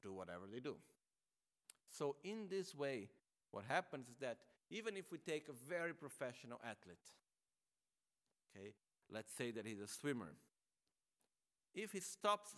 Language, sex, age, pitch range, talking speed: Italian, male, 50-69, 110-155 Hz, 145 wpm